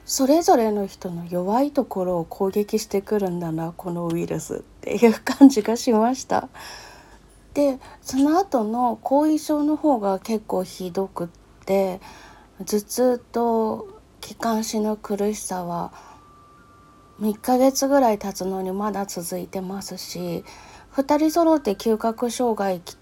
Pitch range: 185-235 Hz